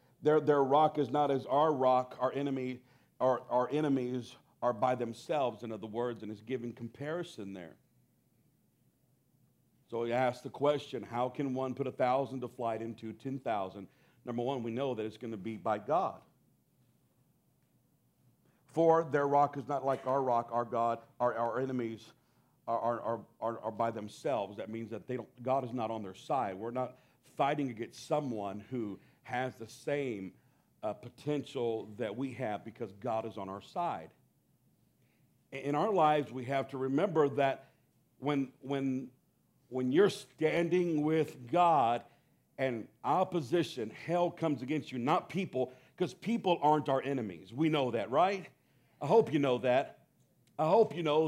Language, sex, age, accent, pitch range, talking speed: English, male, 50-69, American, 120-145 Hz, 165 wpm